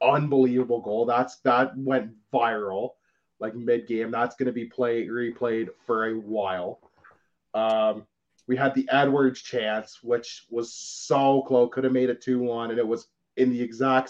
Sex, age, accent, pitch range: male, 20-39, American, 115-130 Hz